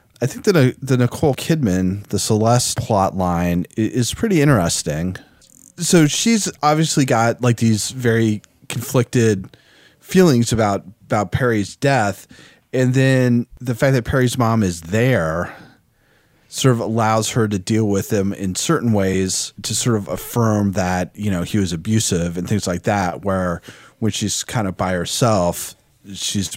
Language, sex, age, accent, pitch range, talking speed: English, male, 30-49, American, 95-125 Hz, 155 wpm